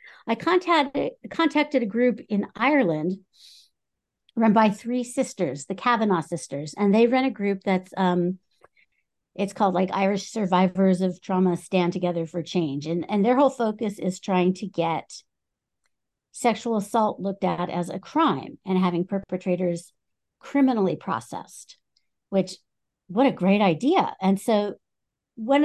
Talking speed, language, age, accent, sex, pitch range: 145 wpm, English, 50-69, American, female, 175-225 Hz